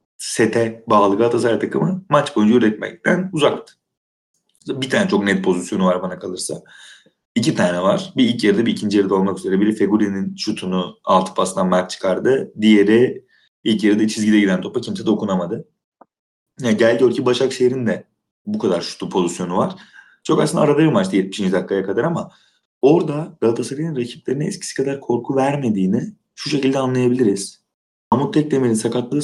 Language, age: Turkish, 30-49